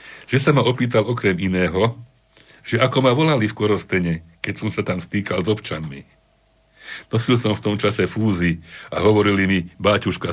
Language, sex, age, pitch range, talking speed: Slovak, male, 60-79, 90-120 Hz, 170 wpm